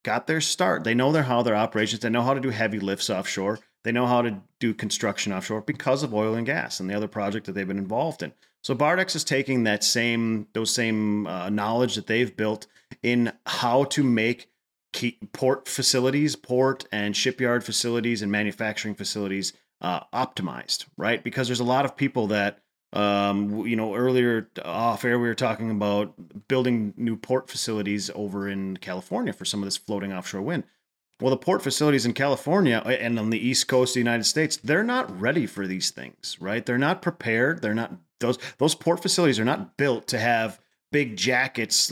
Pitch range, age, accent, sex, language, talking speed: 105-130 Hz, 30-49, American, male, English, 195 wpm